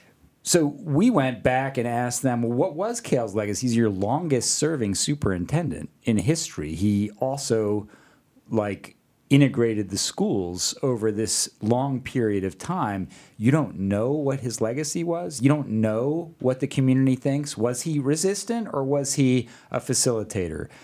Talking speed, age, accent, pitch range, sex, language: 150 wpm, 40-59, American, 110-140 Hz, male, English